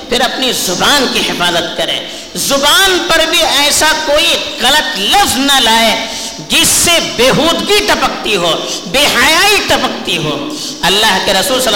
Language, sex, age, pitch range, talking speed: Urdu, female, 50-69, 240-340 Hz, 150 wpm